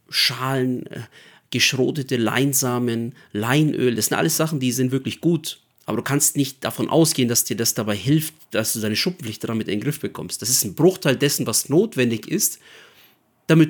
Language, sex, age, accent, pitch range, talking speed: German, male, 40-59, German, 115-150 Hz, 180 wpm